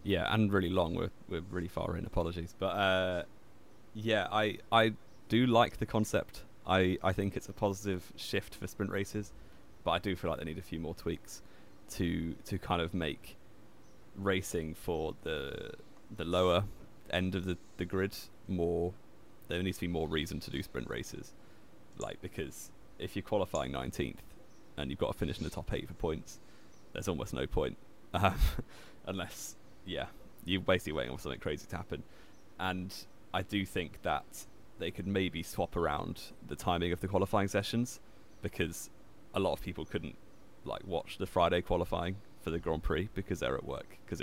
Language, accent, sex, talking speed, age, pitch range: English, British, male, 180 wpm, 20-39, 90-105 Hz